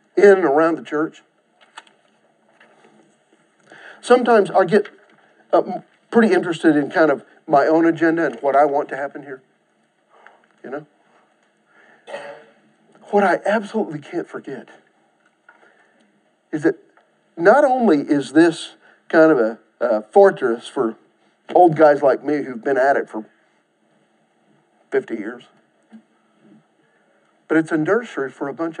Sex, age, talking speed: male, 50-69, 125 wpm